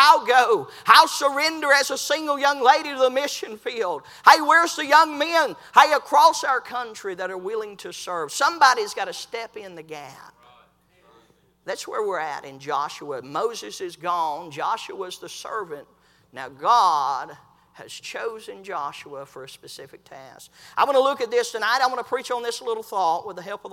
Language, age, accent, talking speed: English, 50-69, American, 185 wpm